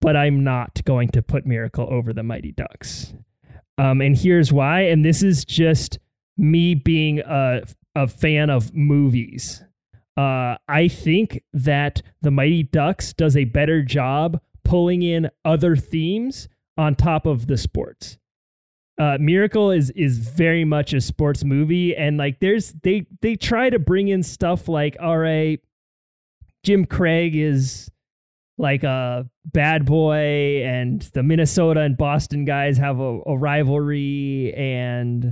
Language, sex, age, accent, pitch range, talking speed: English, male, 20-39, American, 130-165 Hz, 145 wpm